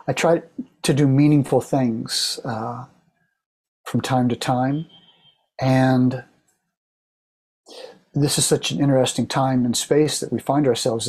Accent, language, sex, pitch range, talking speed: American, English, male, 125-160 Hz, 130 wpm